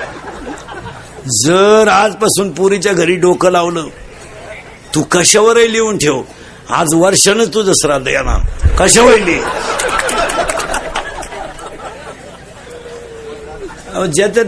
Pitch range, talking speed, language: 200-240 Hz, 80 wpm, Marathi